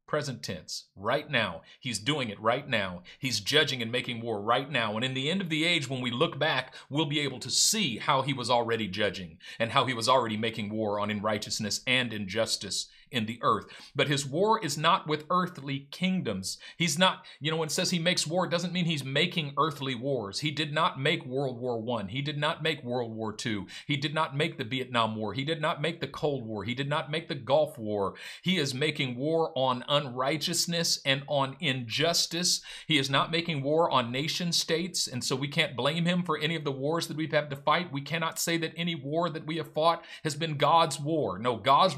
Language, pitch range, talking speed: English, 120-160 Hz, 230 wpm